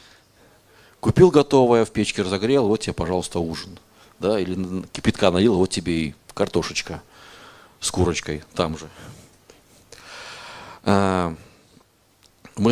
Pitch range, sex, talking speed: 95-120 Hz, male, 105 wpm